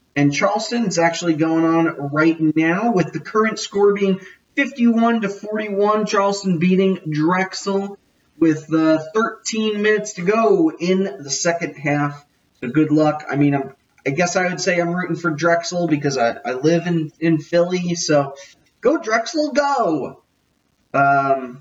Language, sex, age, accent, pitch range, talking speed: English, male, 30-49, American, 150-210 Hz, 155 wpm